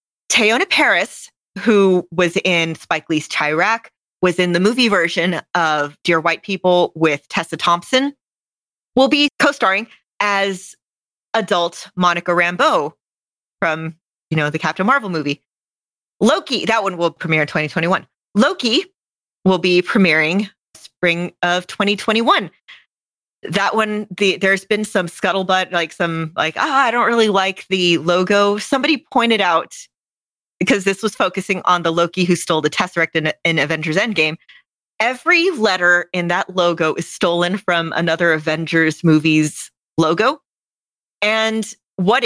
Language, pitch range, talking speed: English, 160-195 Hz, 140 wpm